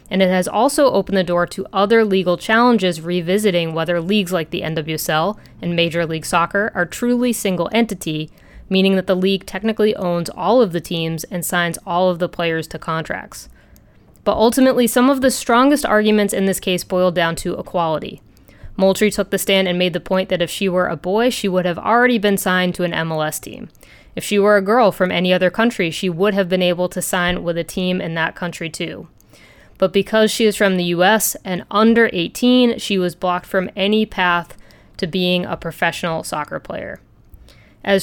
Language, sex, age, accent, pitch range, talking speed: English, female, 20-39, American, 175-205 Hz, 200 wpm